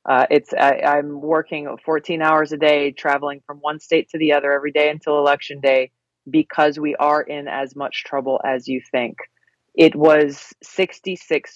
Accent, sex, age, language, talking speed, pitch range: American, female, 30-49, English, 175 wpm, 135-150 Hz